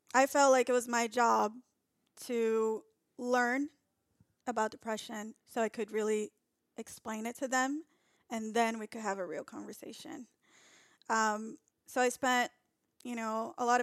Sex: female